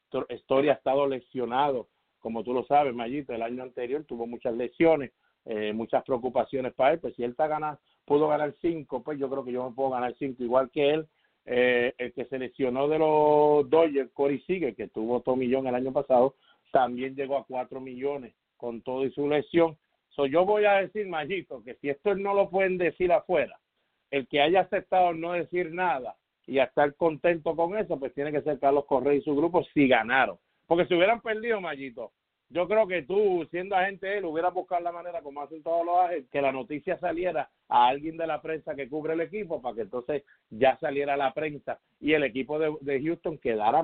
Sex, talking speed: male, 210 wpm